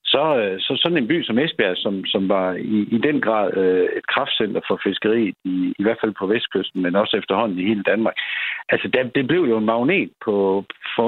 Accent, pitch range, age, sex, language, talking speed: native, 100-150 Hz, 60-79, male, Danish, 215 wpm